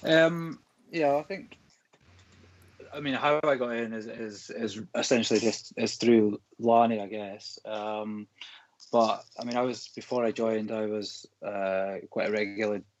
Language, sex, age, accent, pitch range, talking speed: English, male, 20-39, British, 105-120 Hz, 160 wpm